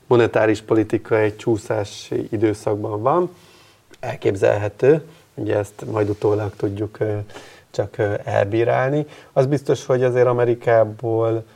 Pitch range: 105-115 Hz